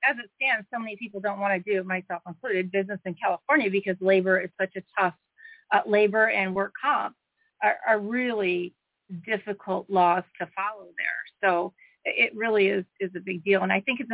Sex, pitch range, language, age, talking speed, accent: female, 185-210 Hz, English, 40-59, 200 wpm, American